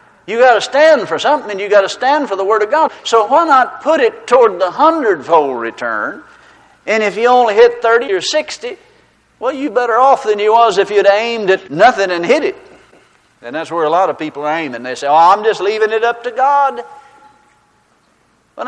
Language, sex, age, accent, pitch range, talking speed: English, male, 60-79, American, 175-285 Hz, 220 wpm